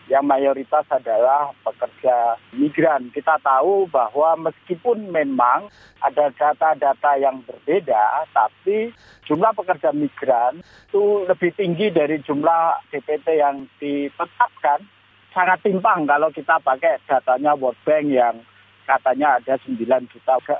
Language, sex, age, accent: Indonesian, male, 40-59, native